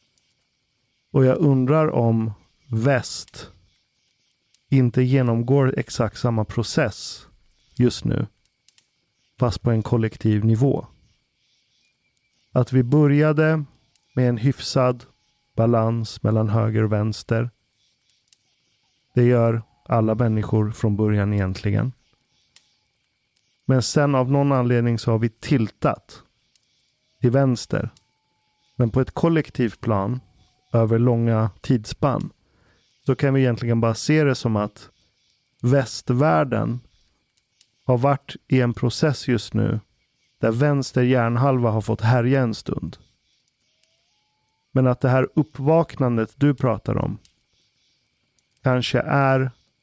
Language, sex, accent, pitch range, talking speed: Swedish, male, native, 115-130 Hz, 105 wpm